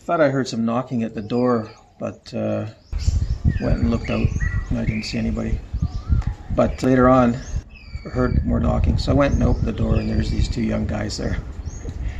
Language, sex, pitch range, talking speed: English, male, 100-120 Hz, 205 wpm